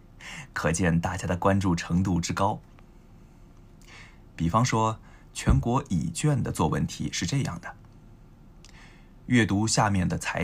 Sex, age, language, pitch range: male, 20-39, Japanese, 90-115 Hz